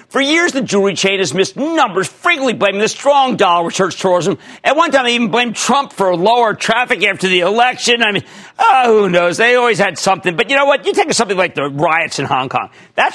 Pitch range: 180-245 Hz